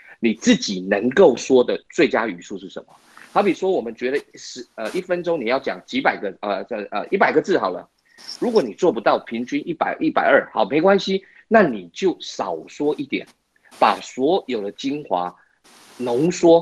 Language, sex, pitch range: Chinese, male, 120-195 Hz